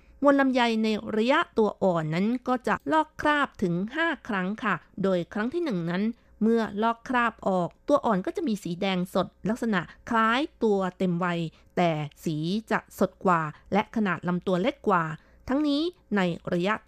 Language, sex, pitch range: Thai, female, 175-225 Hz